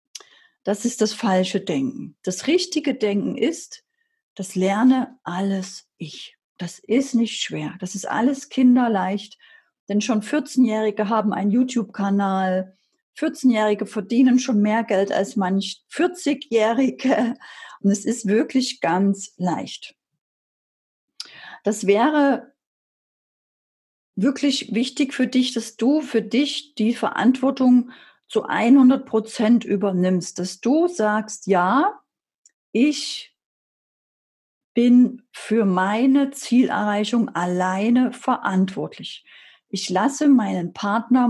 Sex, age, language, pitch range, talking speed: female, 40-59, German, 200-265 Hz, 105 wpm